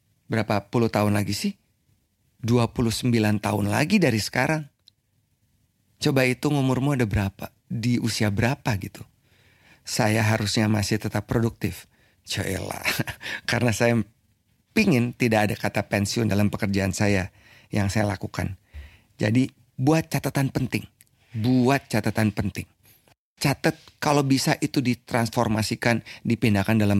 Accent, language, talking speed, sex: native, Indonesian, 120 wpm, male